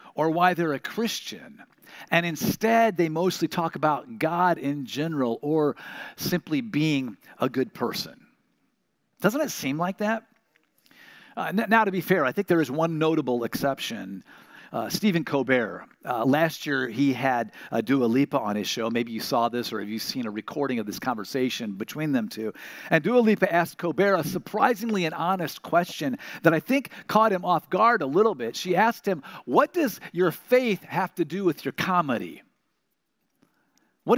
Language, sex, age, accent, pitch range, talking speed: English, male, 50-69, American, 145-210 Hz, 175 wpm